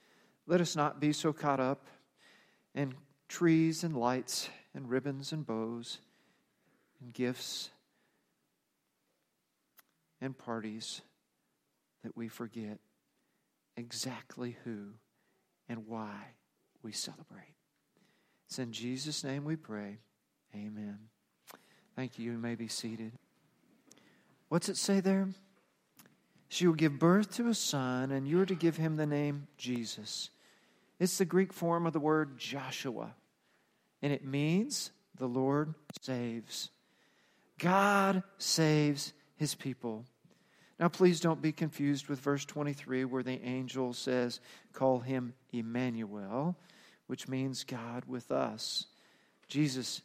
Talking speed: 120 wpm